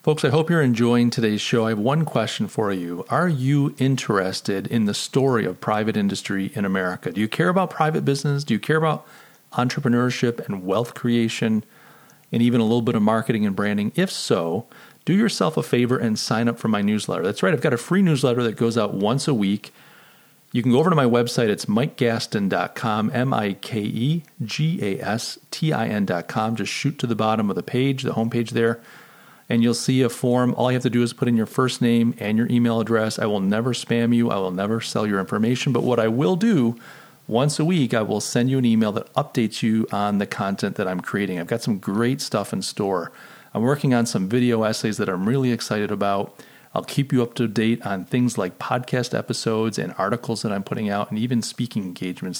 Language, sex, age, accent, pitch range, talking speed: English, male, 40-59, American, 105-130 Hz, 225 wpm